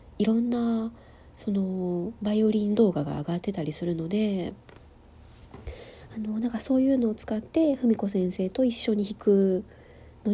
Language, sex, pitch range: Japanese, female, 175-245 Hz